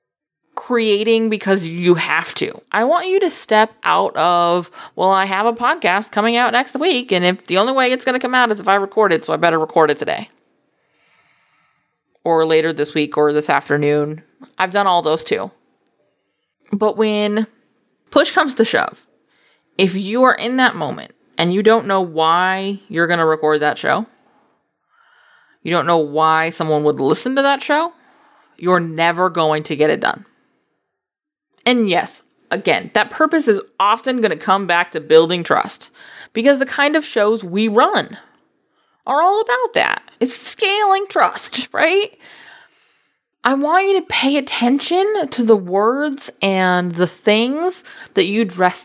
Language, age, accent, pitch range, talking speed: English, 20-39, American, 180-295 Hz, 170 wpm